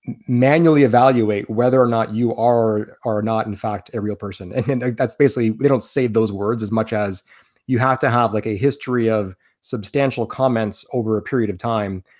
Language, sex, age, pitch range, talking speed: English, male, 30-49, 105-120 Hz, 200 wpm